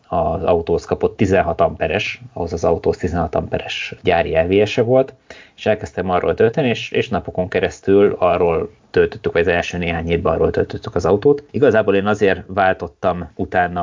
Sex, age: male, 30-49